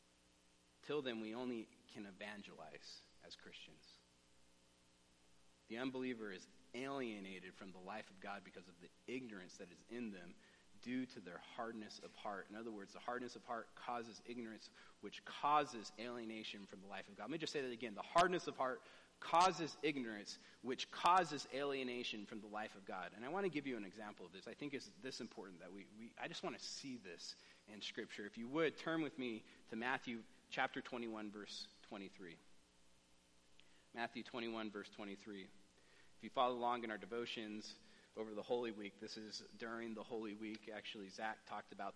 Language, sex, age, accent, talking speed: English, male, 40-59, American, 185 wpm